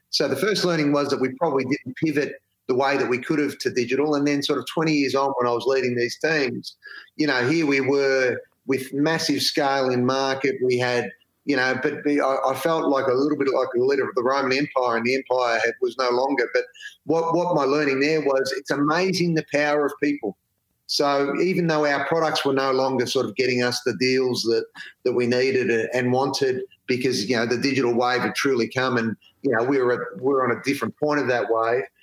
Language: English